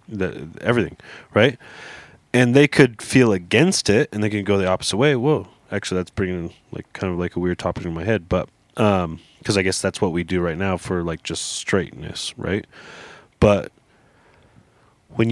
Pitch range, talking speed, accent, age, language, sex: 85-105 Hz, 185 wpm, American, 20-39, English, male